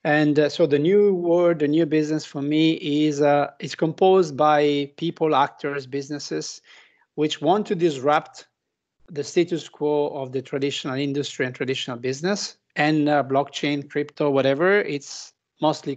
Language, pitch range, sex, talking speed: English, 140-170 Hz, male, 150 wpm